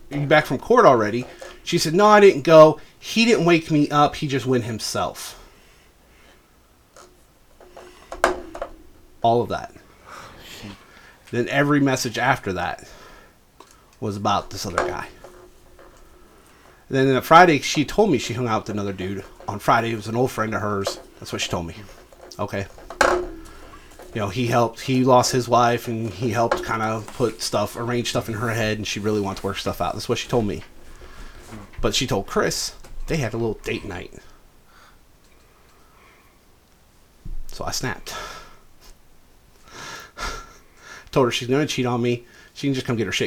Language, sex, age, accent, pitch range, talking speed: English, male, 30-49, American, 110-155 Hz, 170 wpm